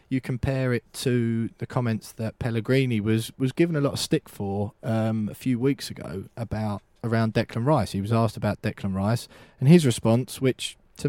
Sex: male